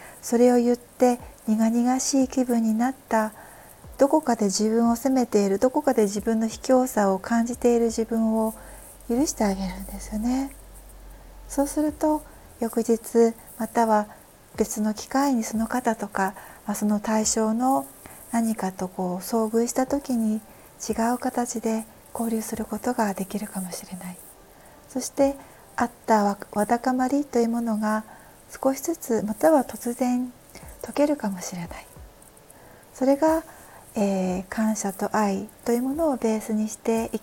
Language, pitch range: Japanese, 210-255 Hz